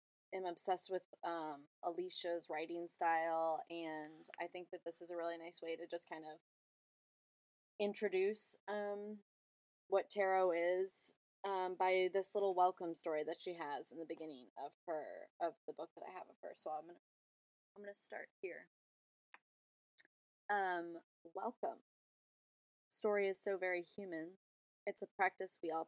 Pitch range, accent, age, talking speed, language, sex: 165-185 Hz, American, 20-39, 160 wpm, English, female